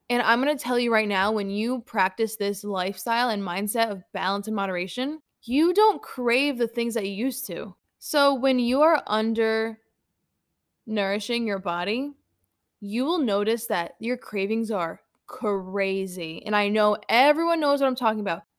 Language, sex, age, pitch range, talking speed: English, female, 10-29, 210-265 Hz, 170 wpm